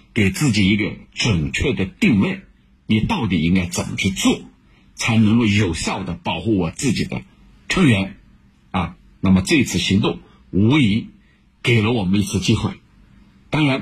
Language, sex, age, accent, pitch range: Chinese, male, 60-79, native, 95-145 Hz